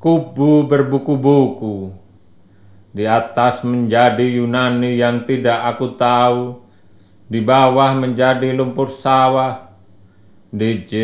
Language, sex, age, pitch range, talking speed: Indonesian, male, 40-59, 100-130 Hz, 85 wpm